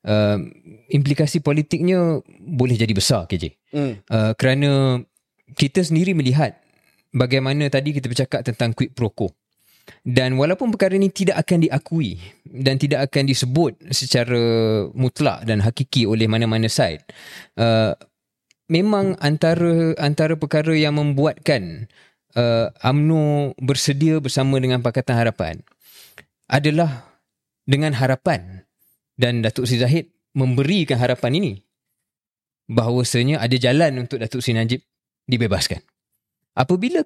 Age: 20-39